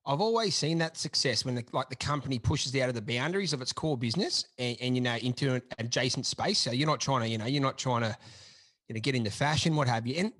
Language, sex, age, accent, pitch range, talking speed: English, male, 30-49, Australian, 120-150 Hz, 275 wpm